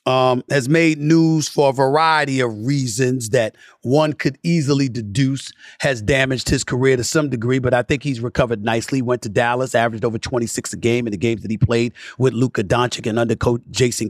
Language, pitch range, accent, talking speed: English, 120-150 Hz, American, 200 wpm